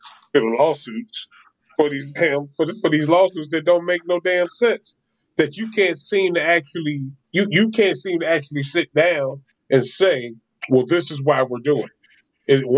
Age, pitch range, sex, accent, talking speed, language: 30-49, 135-175 Hz, male, American, 185 wpm, English